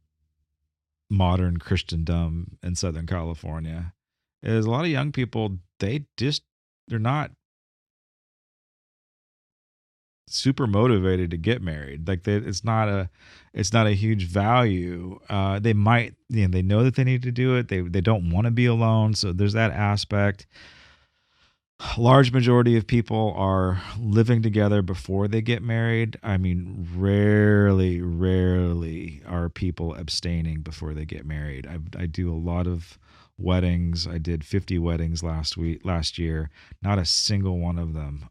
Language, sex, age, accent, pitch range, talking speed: English, male, 30-49, American, 80-105 Hz, 150 wpm